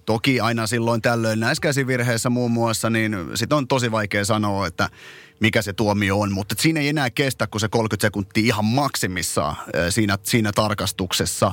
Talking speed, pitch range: 170 wpm, 110-145 Hz